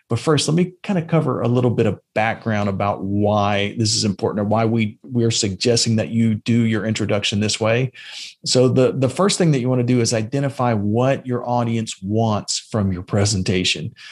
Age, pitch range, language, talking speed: 40-59, 110-140 Hz, English, 210 wpm